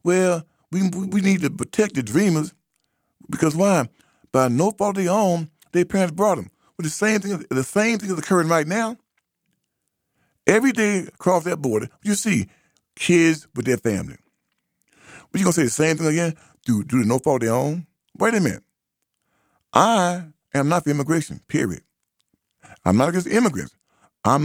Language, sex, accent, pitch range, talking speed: English, male, American, 120-175 Hz, 185 wpm